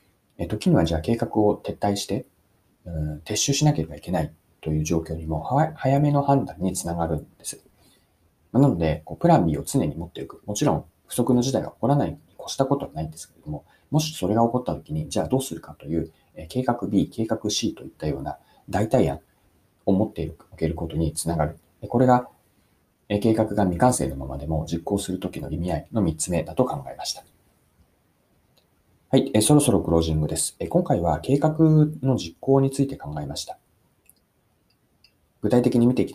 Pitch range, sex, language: 85-125 Hz, male, Japanese